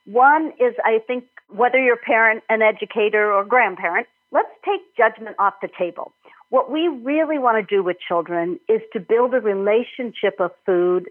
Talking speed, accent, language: 185 wpm, American, English